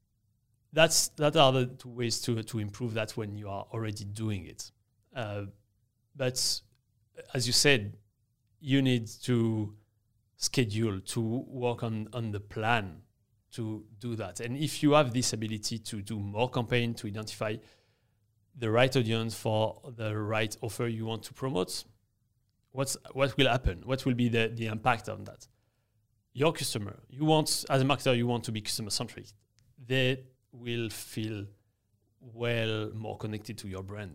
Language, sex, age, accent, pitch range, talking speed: English, male, 30-49, French, 110-130 Hz, 160 wpm